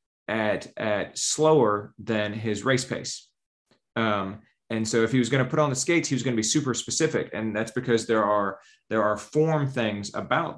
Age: 30-49